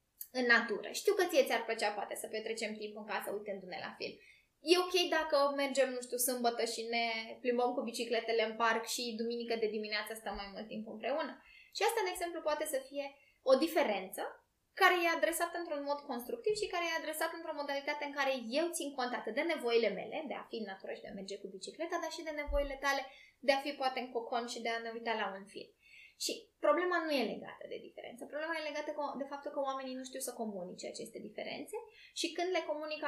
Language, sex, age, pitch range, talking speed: Romanian, female, 10-29, 230-330 Hz, 225 wpm